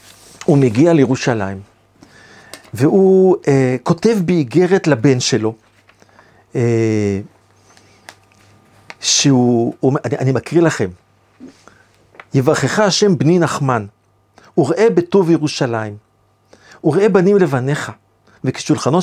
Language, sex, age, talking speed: Hebrew, male, 50-69, 85 wpm